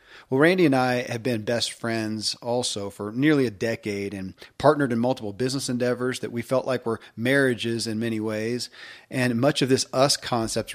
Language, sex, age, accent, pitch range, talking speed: English, male, 40-59, American, 110-135 Hz, 190 wpm